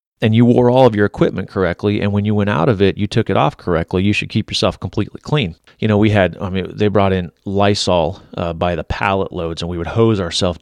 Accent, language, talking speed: American, English, 260 wpm